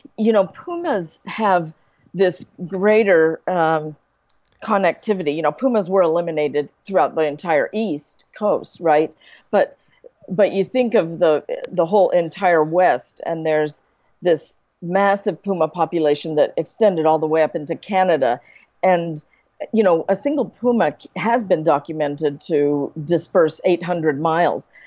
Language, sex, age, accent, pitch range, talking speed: English, female, 40-59, American, 155-205 Hz, 135 wpm